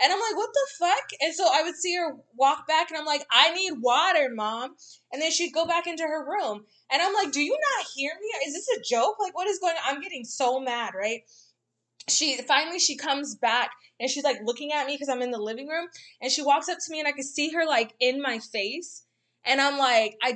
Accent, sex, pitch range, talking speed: American, female, 245-315 Hz, 255 wpm